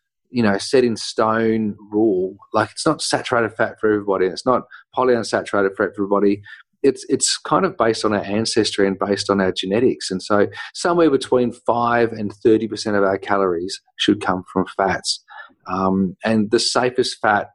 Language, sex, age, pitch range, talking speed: English, male, 40-59, 100-115 Hz, 170 wpm